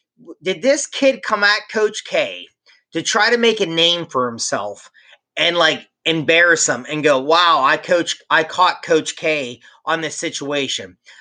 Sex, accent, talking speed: male, American, 165 wpm